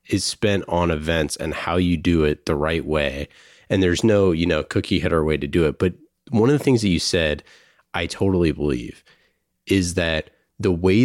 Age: 30-49